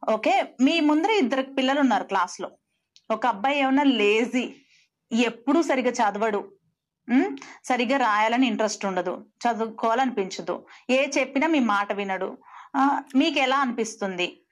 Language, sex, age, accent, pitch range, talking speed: Telugu, female, 30-49, native, 225-285 Hz, 115 wpm